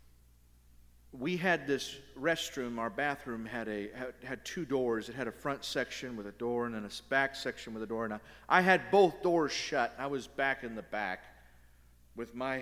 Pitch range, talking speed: 95-145 Hz, 200 wpm